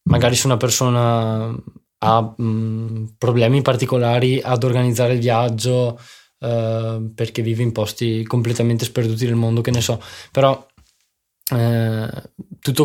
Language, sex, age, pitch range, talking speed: Italian, male, 20-39, 120-135 Hz, 120 wpm